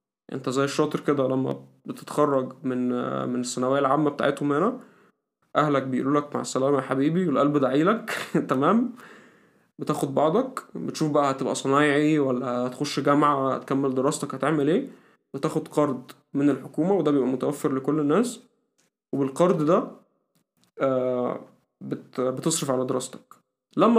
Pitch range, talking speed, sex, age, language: 130-155 Hz, 125 wpm, male, 20-39, Arabic